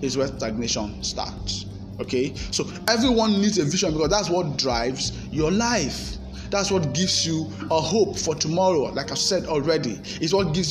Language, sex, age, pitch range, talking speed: English, male, 20-39, 135-190 Hz, 175 wpm